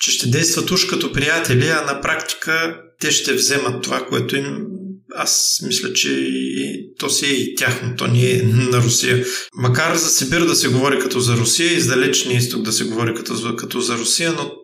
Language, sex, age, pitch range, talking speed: Bulgarian, male, 40-59, 120-135 Hz, 205 wpm